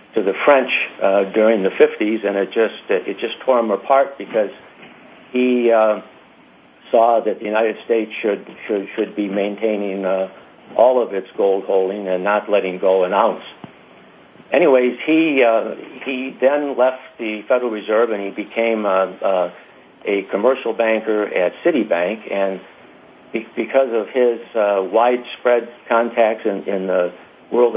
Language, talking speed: English, 150 wpm